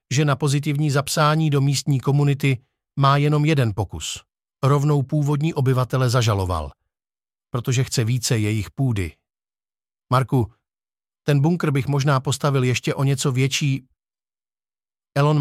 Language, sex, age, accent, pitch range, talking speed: Czech, male, 50-69, native, 115-145 Hz, 120 wpm